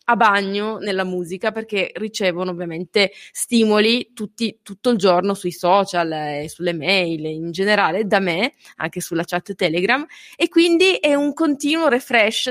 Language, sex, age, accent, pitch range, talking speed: Italian, female, 20-39, native, 185-245 Hz, 160 wpm